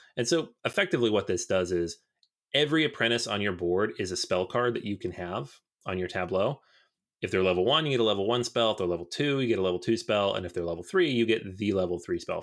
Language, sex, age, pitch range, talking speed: English, male, 30-49, 90-120 Hz, 260 wpm